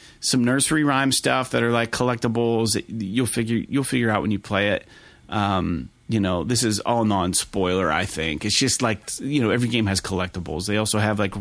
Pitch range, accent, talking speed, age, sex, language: 105-130 Hz, American, 215 wpm, 30-49, male, English